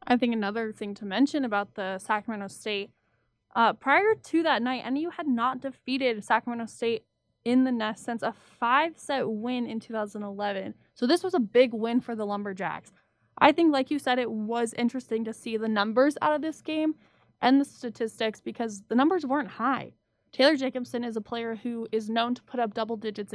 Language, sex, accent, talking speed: English, female, American, 195 wpm